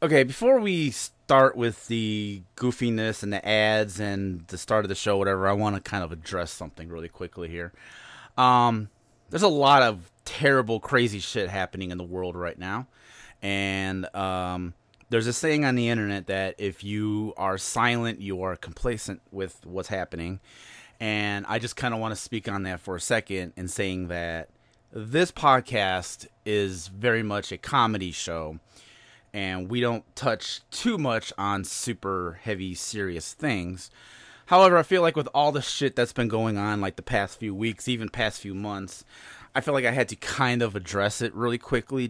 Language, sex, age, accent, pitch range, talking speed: English, male, 30-49, American, 95-120 Hz, 180 wpm